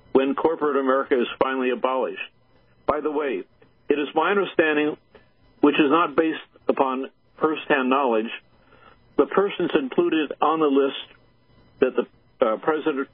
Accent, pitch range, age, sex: American, 130-150 Hz, 60-79, male